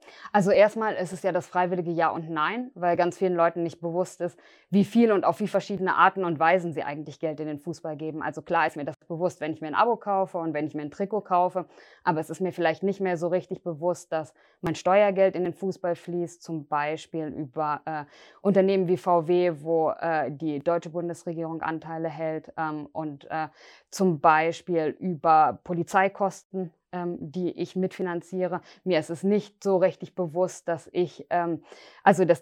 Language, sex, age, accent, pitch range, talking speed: German, female, 20-39, German, 165-190 Hz, 195 wpm